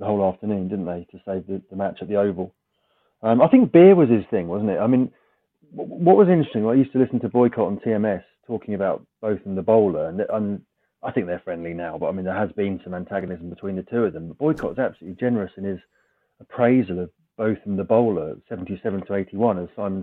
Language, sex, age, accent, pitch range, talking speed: English, male, 30-49, British, 95-120 Hz, 230 wpm